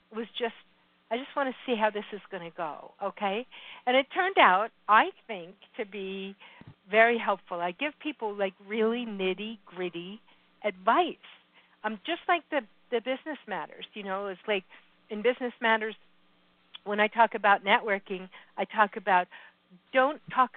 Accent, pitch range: American, 190-225 Hz